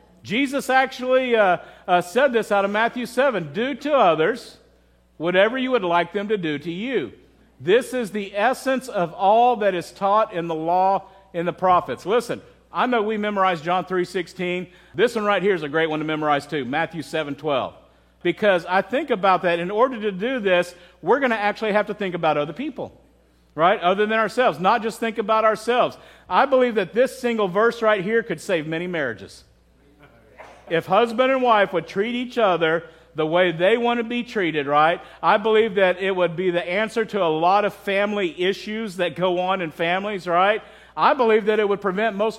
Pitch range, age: 175-230 Hz, 50-69